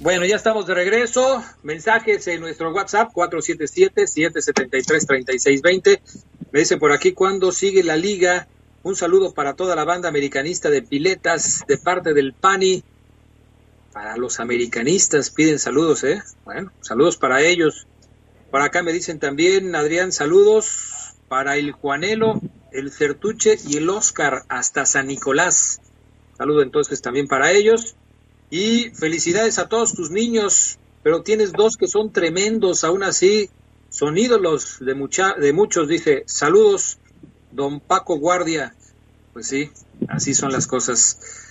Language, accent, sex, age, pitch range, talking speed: Spanish, Mexican, male, 40-59, 150-225 Hz, 140 wpm